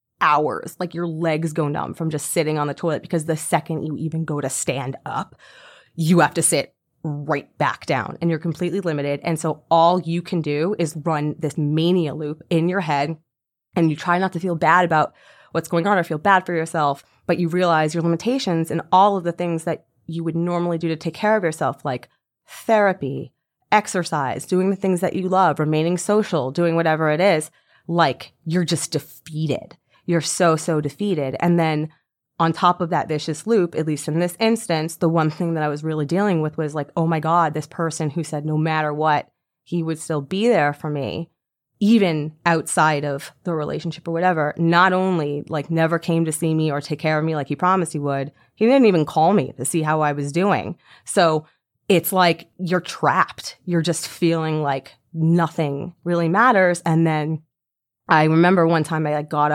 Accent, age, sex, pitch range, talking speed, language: American, 30-49, female, 155-175 Hz, 205 wpm, English